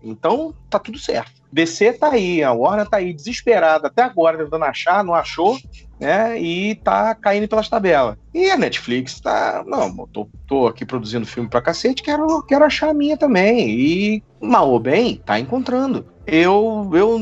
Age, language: 40-59, Portuguese